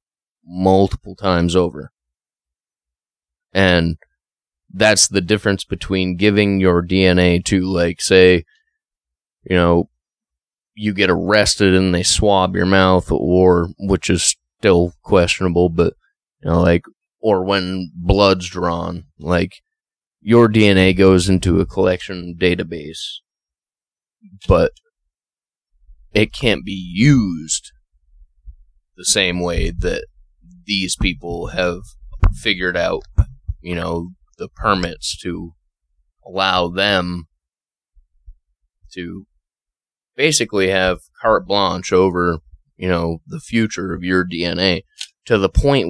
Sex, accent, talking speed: male, American, 105 wpm